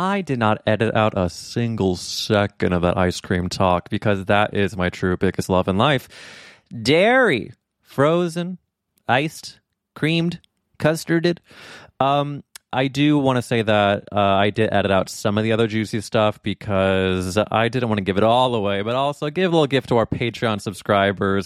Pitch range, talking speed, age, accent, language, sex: 95-125 Hz, 180 wpm, 20-39, American, English, male